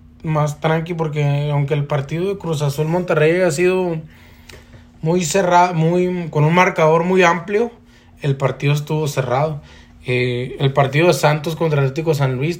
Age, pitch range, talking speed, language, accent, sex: 20-39, 120-150 Hz, 155 wpm, Spanish, Mexican, male